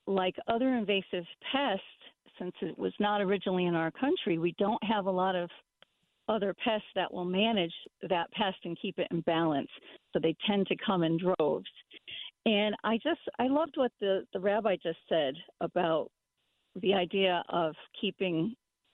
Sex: female